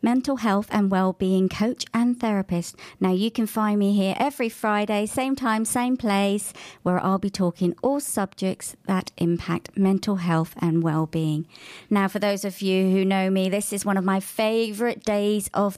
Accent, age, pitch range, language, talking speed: British, 40-59, 185-235 Hz, English, 180 wpm